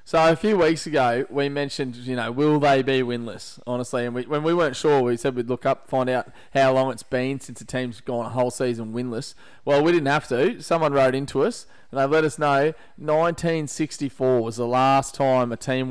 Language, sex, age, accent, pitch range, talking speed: English, male, 20-39, Australian, 120-145 Hz, 225 wpm